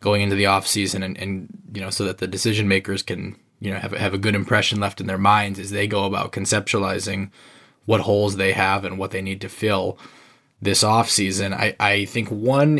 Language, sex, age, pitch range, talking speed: English, male, 20-39, 100-115 Hz, 220 wpm